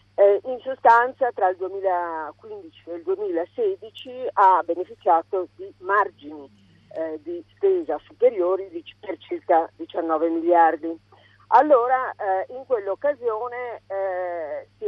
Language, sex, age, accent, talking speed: Italian, female, 40-59, native, 105 wpm